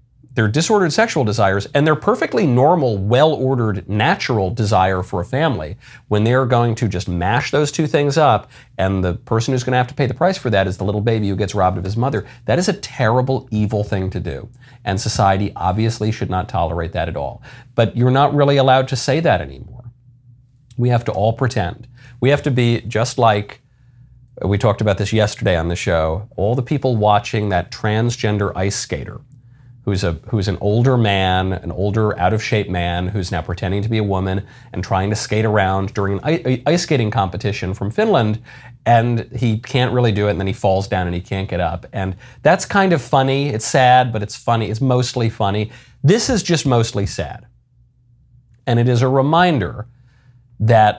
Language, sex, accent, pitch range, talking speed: English, male, American, 100-125 Hz, 200 wpm